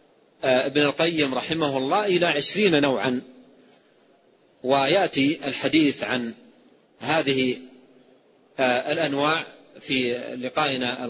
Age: 40-59